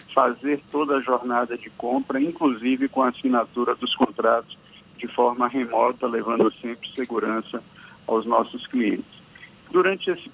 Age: 50-69